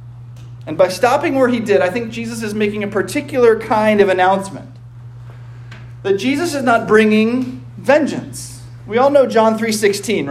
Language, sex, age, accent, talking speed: English, male, 40-59, American, 155 wpm